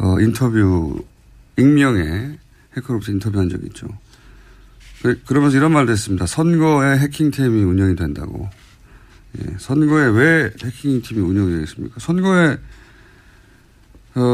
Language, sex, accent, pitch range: Korean, male, native, 100-135 Hz